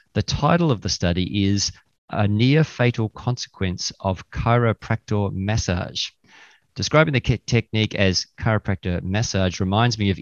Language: English